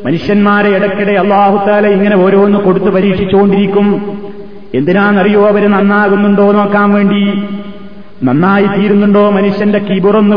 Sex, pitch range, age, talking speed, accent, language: male, 200-215 Hz, 30-49, 95 wpm, native, Malayalam